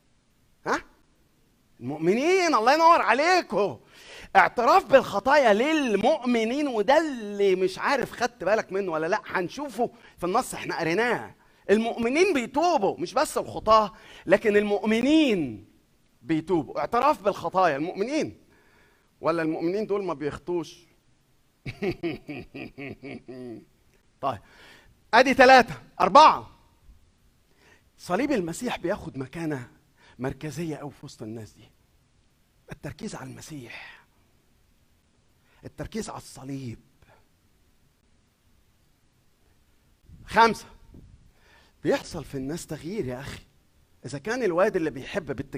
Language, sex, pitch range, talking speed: Arabic, male, 130-205 Hz, 95 wpm